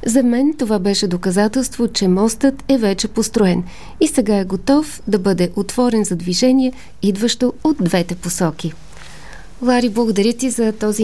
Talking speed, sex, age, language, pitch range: 150 wpm, female, 30-49, Bulgarian, 195-235 Hz